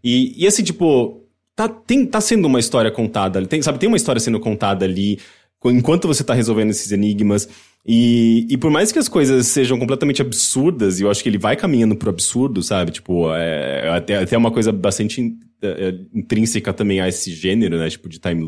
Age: 20-39